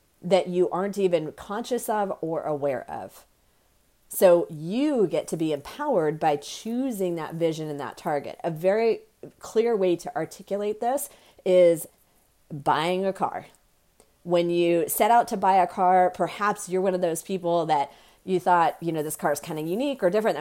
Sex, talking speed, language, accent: female, 175 wpm, English, American